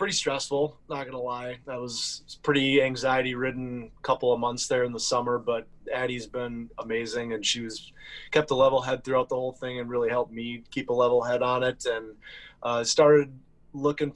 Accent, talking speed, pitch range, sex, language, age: American, 200 wpm, 115-135 Hz, male, English, 20-39